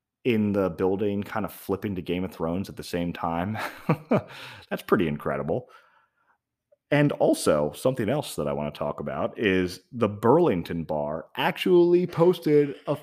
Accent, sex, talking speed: American, male, 155 wpm